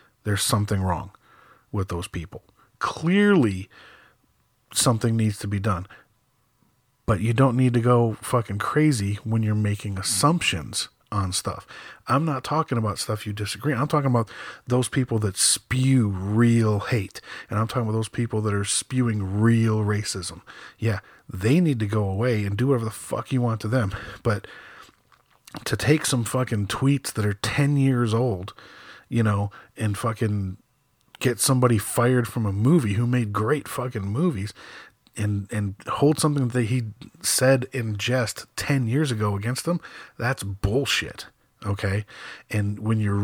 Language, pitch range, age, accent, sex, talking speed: English, 105-130 Hz, 40-59, American, male, 160 wpm